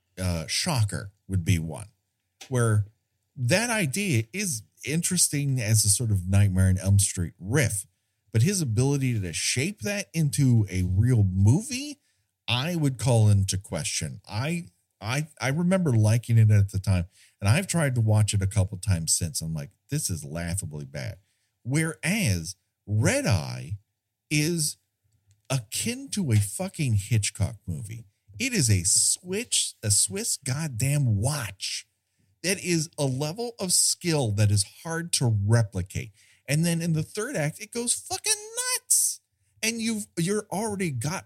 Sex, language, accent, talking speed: male, English, American, 150 wpm